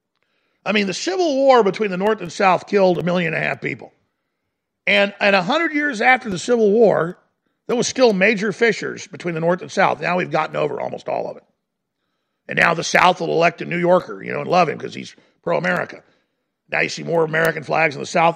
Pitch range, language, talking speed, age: 170-235 Hz, English, 225 wpm, 50-69